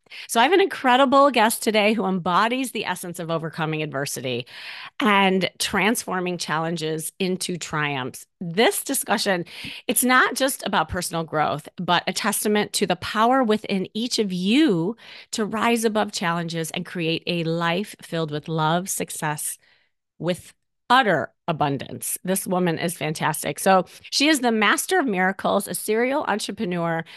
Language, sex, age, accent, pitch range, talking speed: English, female, 30-49, American, 165-220 Hz, 145 wpm